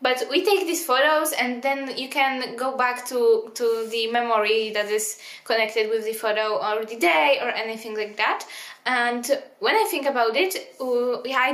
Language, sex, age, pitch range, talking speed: English, female, 10-29, 220-275 Hz, 180 wpm